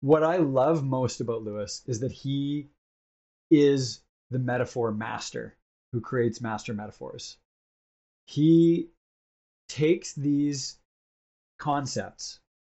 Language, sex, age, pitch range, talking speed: English, male, 20-39, 110-145 Hz, 100 wpm